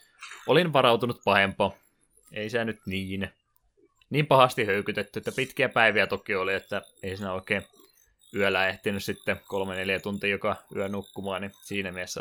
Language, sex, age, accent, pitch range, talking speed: Finnish, male, 20-39, native, 95-105 Hz, 150 wpm